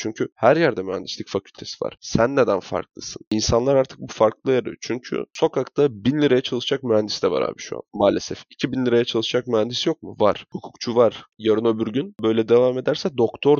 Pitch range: 110-140 Hz